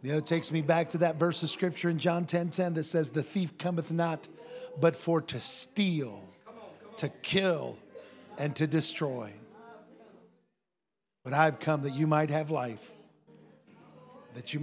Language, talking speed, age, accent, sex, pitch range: English, 170 wpm, 50-69, American, male, 155-220 Hz